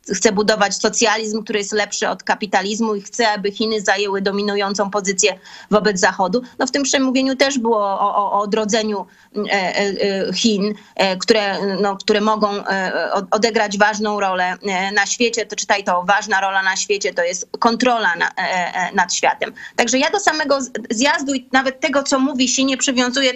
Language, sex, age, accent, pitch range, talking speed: Polish, female, 30-49, native, 210-255 Hz, 175 wpm